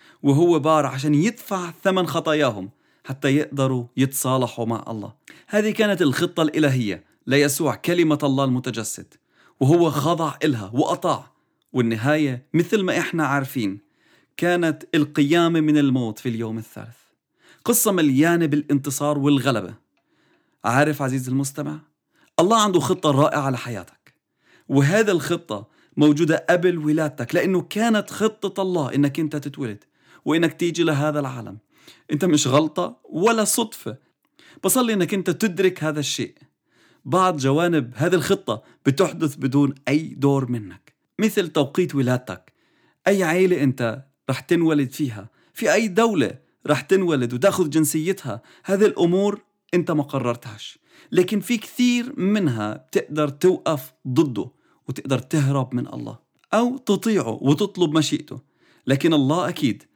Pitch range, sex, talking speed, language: 135-180 Hz, male, 125 wpm, English